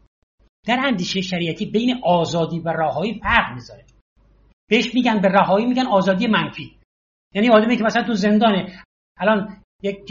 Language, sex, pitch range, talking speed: Persian, male, 185-250 Hz, 150 wpm